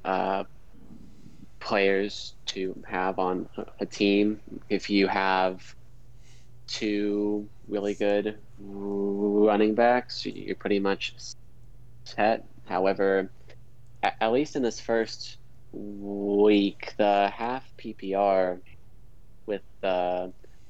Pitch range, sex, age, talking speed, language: 95-120 Hz, male, 20-39, 90 wpm, English